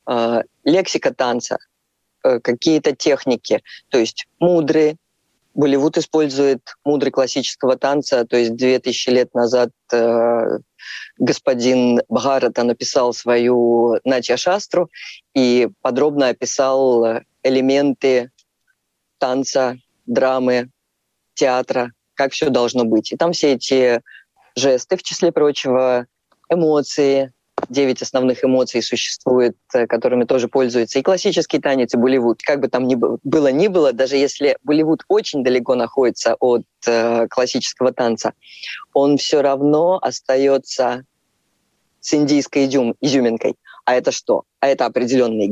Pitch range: 125-145 Hz